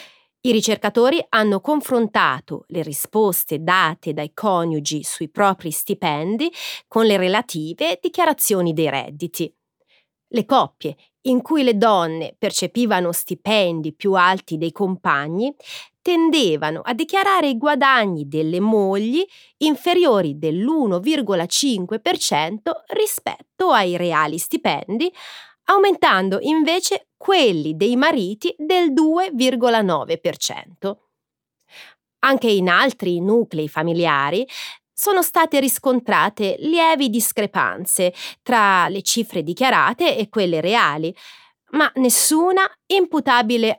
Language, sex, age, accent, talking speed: Italian, female, 30-49, native, 95 wpm